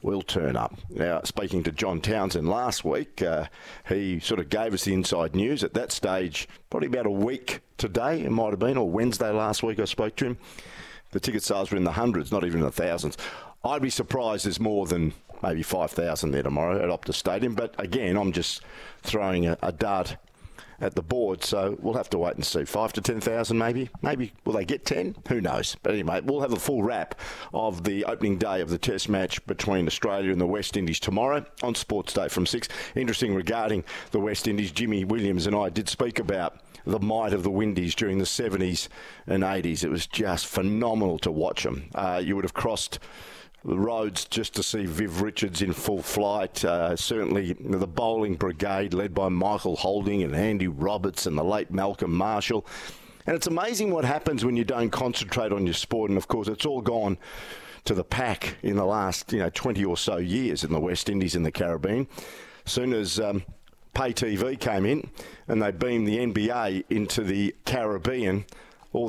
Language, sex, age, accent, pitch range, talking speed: English, male, 50-69, Australian, 95-115 Hz, 205 wpm